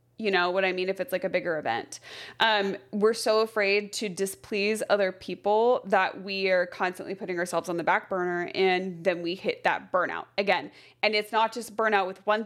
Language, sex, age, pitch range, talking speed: English, female, 20-39, 185-215 Hz, 205 wpm